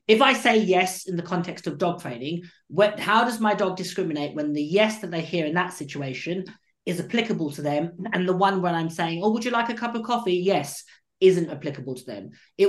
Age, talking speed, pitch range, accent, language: 30-49, 230 wpm, 155-200 Hz, British, English